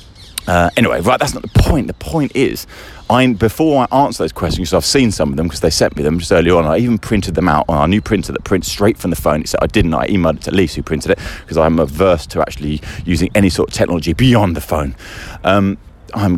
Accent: British